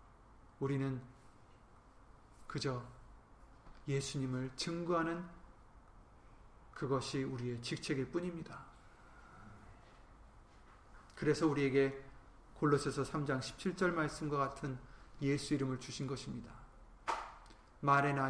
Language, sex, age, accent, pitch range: Korean, male, 30-49, native, 135-195 Hz